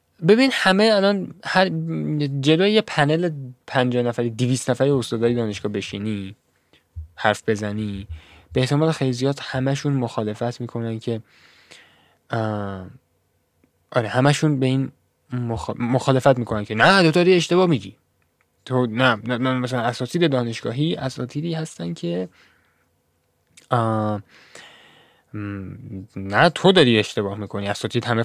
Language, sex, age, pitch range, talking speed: Persian, male, 10-29, 110-180 Hz, 115 wpm